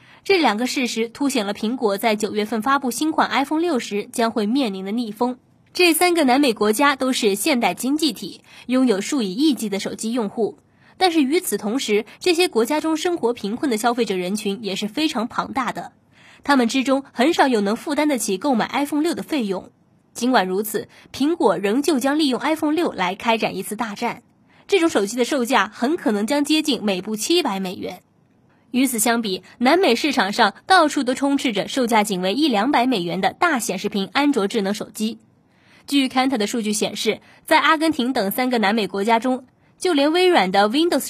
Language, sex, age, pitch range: Chinese, female, 20-39, 215-290 Hz